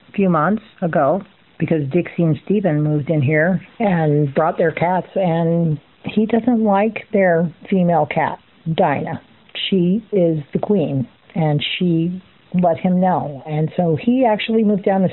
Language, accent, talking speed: English, American, 150 wpm